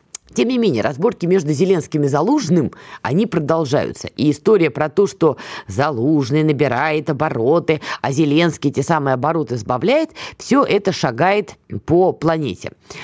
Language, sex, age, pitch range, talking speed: Russian, female, 20-39, 150-205 Hz, 135 wpm